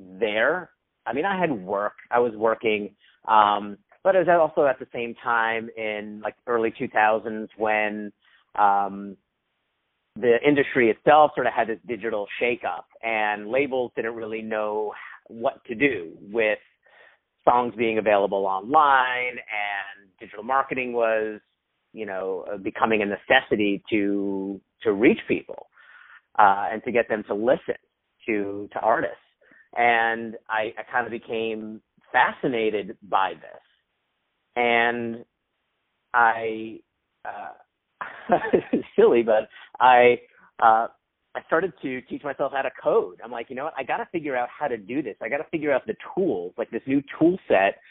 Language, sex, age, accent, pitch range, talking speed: English, male, 40-59, American, 105-120 Hz, 150 wpm